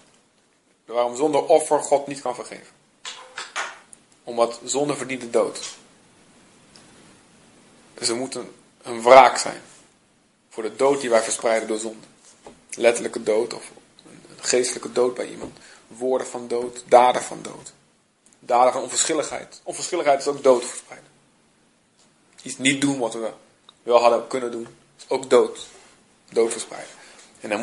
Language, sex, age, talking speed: Dutch, male, 40-59, 140 wpm